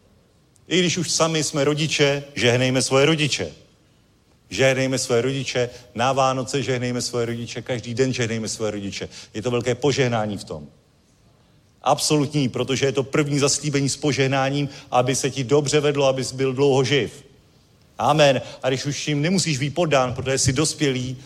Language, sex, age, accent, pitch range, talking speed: Czech, male, 40-59, native, 125-145 Hz, 160 wpm